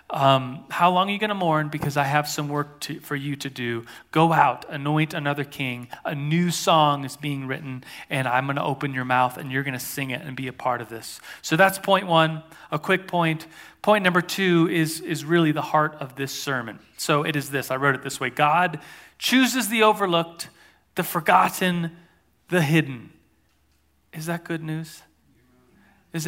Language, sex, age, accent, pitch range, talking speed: English, male, 30-49, American, 140-165 Hz, 200 wpm